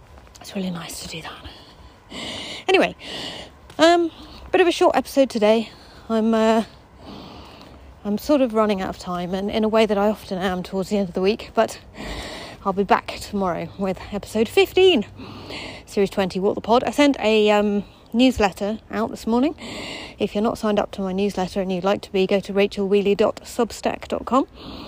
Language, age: English, 40-59